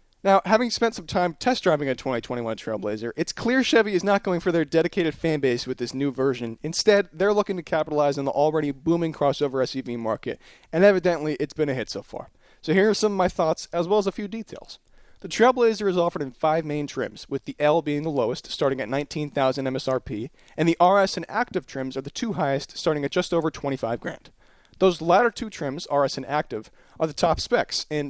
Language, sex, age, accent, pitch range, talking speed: English, male, 30-49, American, 140-190 Hz, 220 wpm